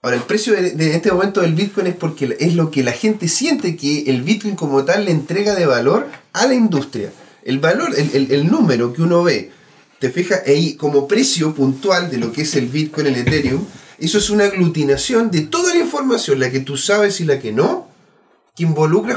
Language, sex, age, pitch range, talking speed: Spanish, male, 30-49, 140-205 Hz, 215 wpm